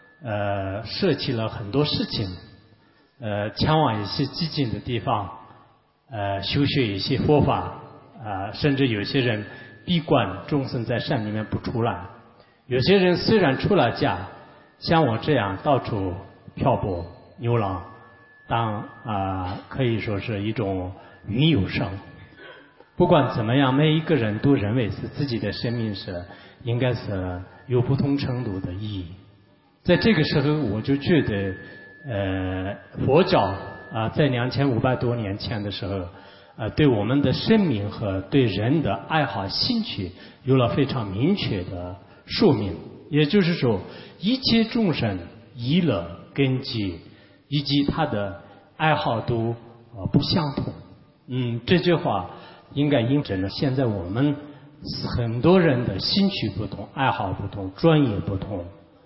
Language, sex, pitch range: English, male, 100-140 Hz